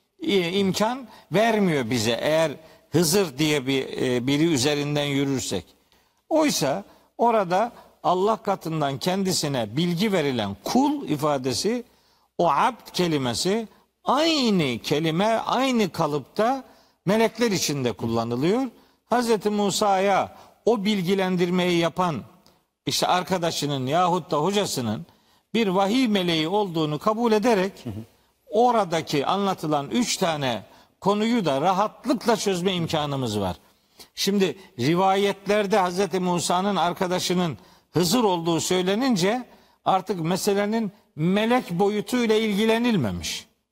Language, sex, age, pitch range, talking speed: Turkish, male, 50-69, 160-215 Hz, 95 wpm